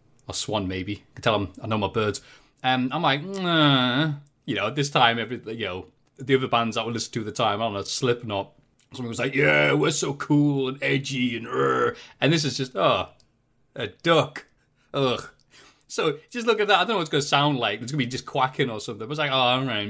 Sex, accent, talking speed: male, British, 255 wpm